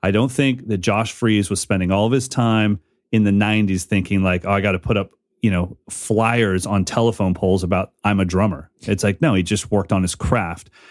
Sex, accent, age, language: male, American, 30-49, English